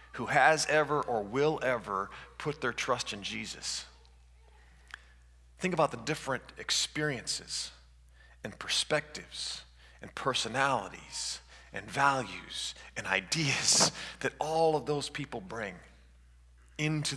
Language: English